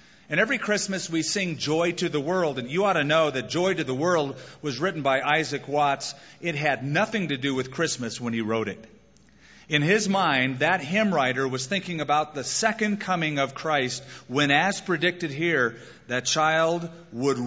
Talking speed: 190 wpm